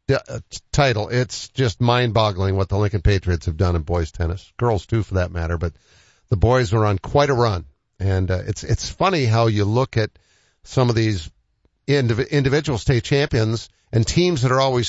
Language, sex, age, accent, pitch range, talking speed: English, male, 50-69, American, 95-125 Hz, 195 wpm